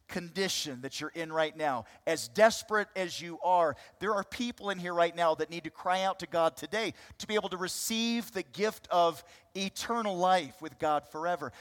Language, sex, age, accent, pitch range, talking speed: English, male, 40-59, American, 145-225 Hz, 200 wpm